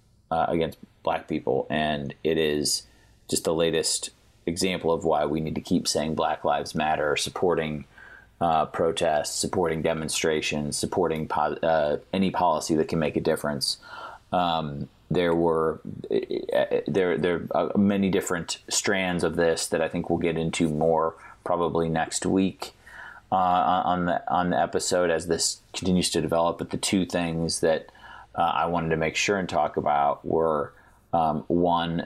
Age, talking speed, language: 30-49, 160 wpm, English